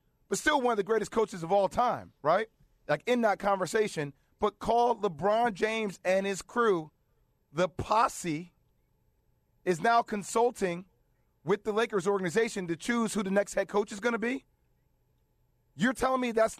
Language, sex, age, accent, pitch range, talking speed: English, male, 30-49, American, 170-225 Hz, 165 wpm